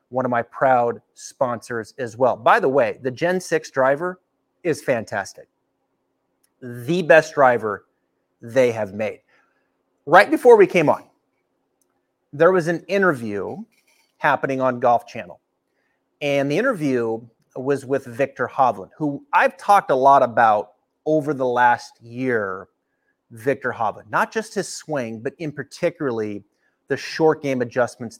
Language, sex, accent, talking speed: English, male, American, 140 wpm